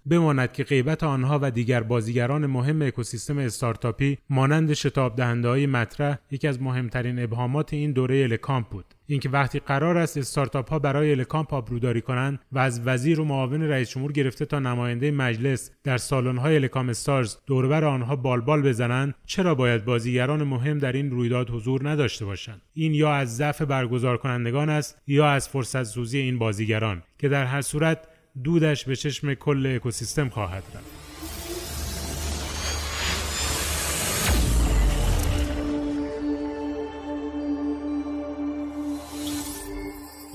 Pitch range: 120-150 Hz